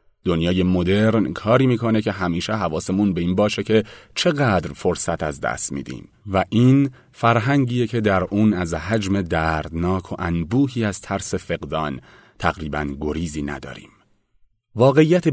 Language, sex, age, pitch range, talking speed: Persian, male, 30-49, 90-120 Hz, 135 wpm